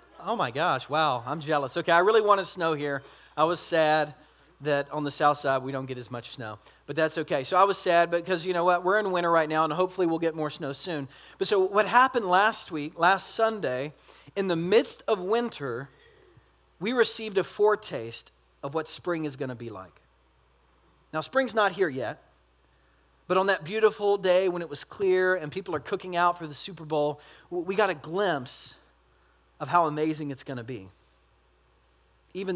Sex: male